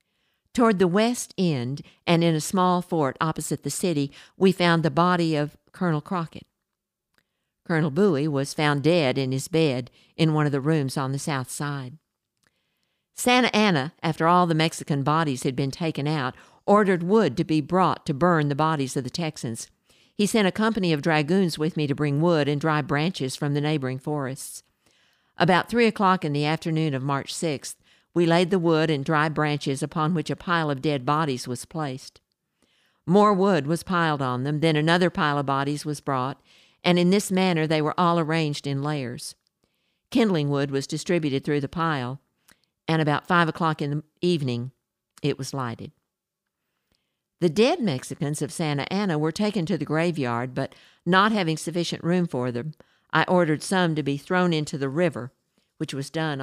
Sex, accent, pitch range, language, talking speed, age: female, American, 140-175 Hz, English, 185 wpm, 50-69